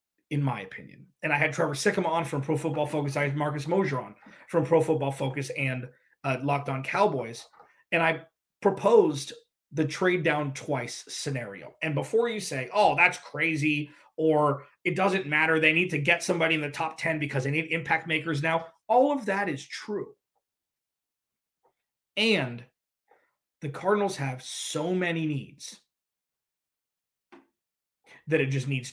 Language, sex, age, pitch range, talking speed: English, male, 30-49, 140-170 Hz, 160 wpm